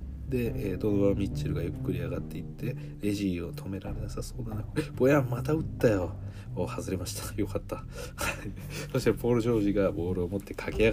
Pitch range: 95-140 Hz